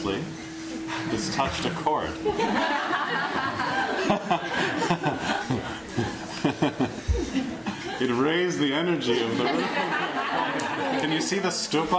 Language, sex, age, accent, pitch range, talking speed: English, male, 40-59, American, 105-145 Hz, 80 wpm